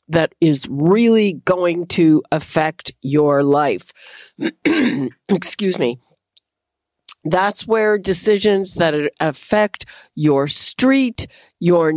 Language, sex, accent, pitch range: English, female, American, 165-215 Hz